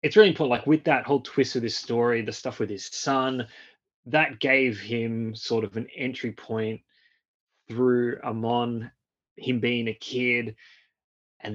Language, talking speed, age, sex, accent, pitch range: English, 160 wpm, 20-39, male, Australian, 105-125 Hz